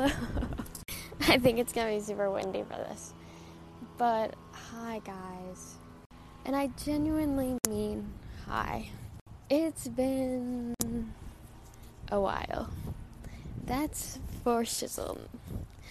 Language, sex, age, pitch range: English, female, 10-29, 200-285 Hz